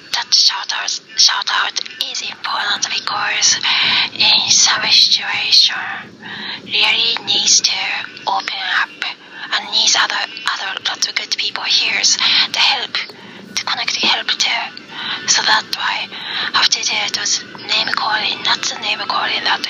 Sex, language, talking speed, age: female, English, 135 wpm, 20-39